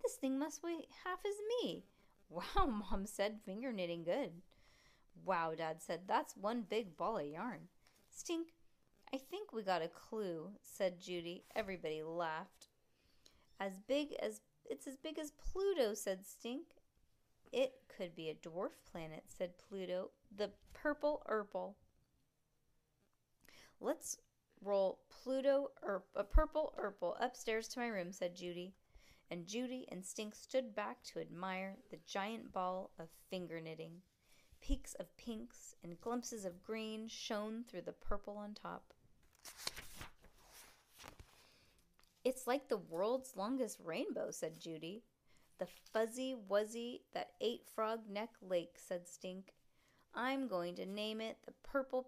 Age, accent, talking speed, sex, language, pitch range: 20-39, American, 140 wpm, female, English, 180-250 Hz